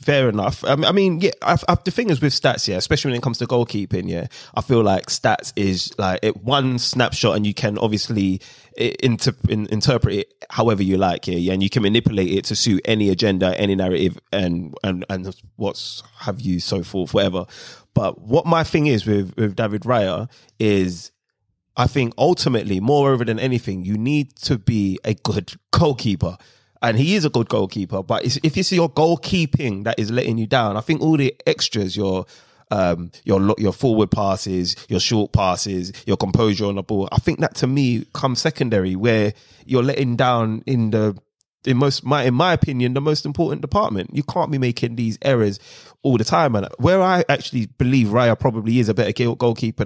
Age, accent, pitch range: 20-39, British, 100-135 Hz